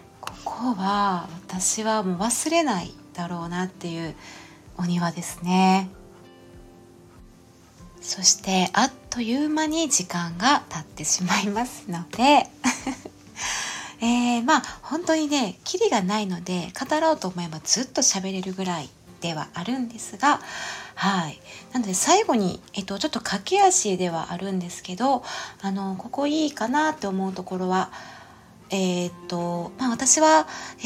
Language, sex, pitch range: Japanese, female, 175-245 Hz